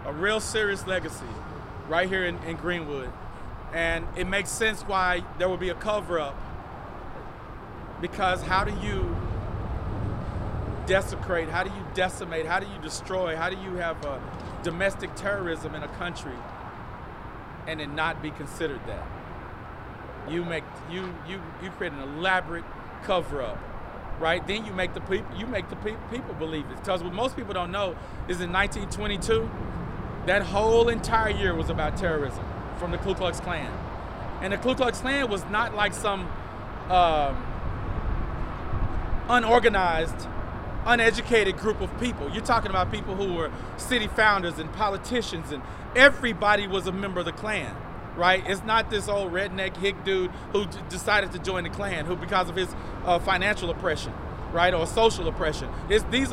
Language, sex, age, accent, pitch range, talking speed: English, male, 40-59, American, 135-200 Hz, 160 wpm